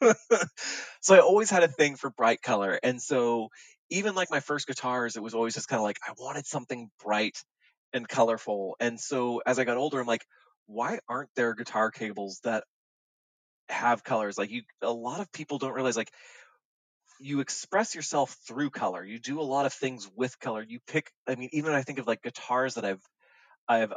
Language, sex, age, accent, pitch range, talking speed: English, male, 20-39, American, 115-145 Hz, 200 wpm